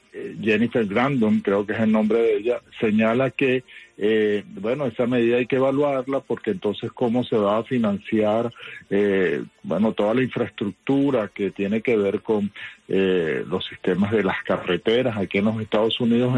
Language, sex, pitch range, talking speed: English, male, 100-120 Hz, 170 wpm